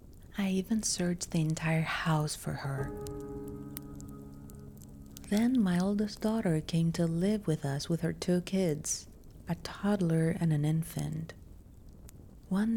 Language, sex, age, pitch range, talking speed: English, female, 40-59, 145-190 Hz, 125 wpm